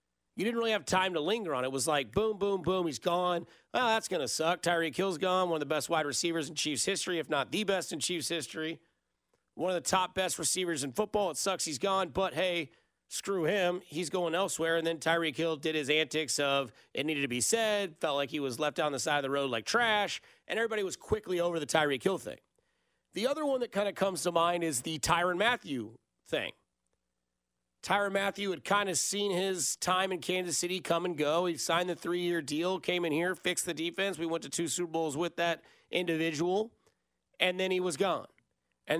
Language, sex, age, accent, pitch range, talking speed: English, male, 40-59, American, 150-190 Hz, 230 wpm